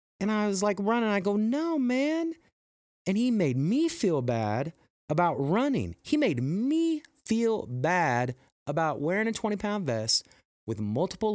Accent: American